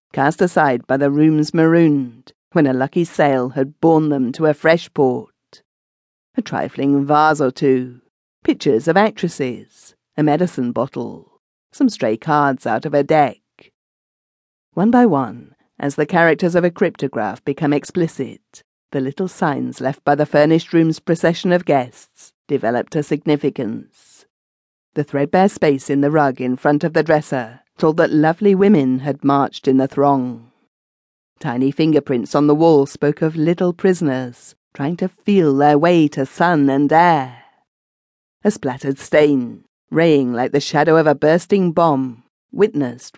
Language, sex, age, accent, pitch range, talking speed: English, female, 50-69, British, 135-165 Hz, 155 wpm